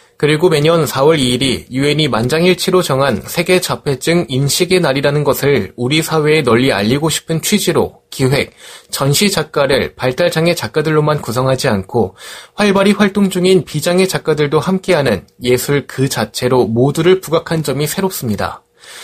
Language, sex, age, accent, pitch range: Korean, male, 20-39, native, 130-185 Hz